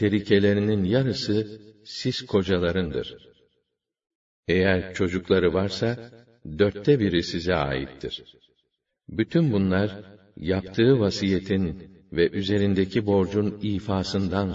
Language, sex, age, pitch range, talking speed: Arabic, male, 60-79, 95-115 Hz, 80 wpm